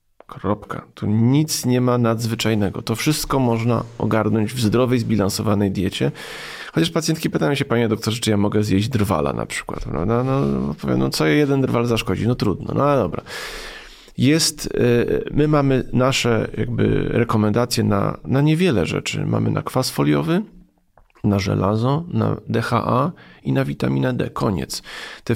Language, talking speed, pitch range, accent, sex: Polish, 145 wpm, 105-140 Hz, native, male